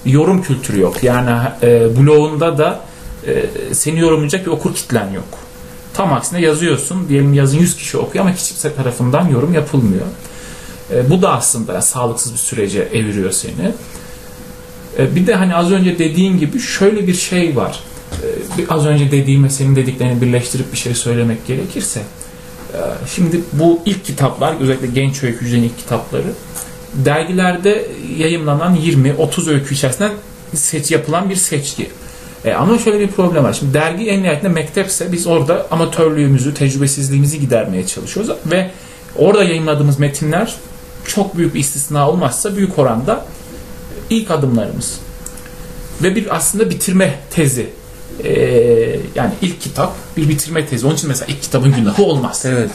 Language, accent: Turkish, native